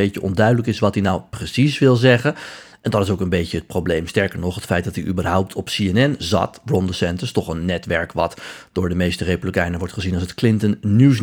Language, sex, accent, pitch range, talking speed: Dutch, male, Dutch, 95-120 Hz, 230 wpm